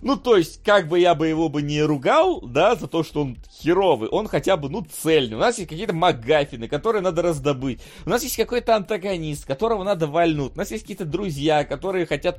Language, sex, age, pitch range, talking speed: Russian, male, 30-49, 165-195 Hz, 220 wpm